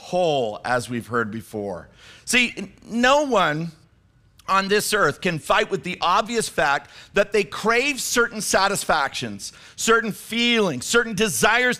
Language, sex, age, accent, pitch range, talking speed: English, male, 50-69, American, 160-230 Hz, 130 wpm